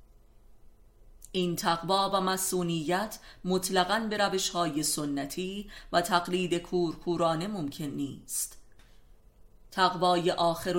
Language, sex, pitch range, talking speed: Persian, female, 155-185 Hz, 85 wpm